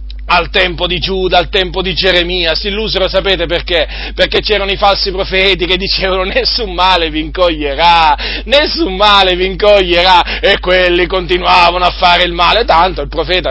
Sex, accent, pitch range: male, native, 165-180 Hz